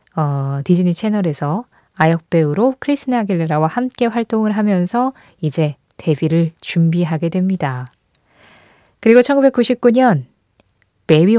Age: 20-39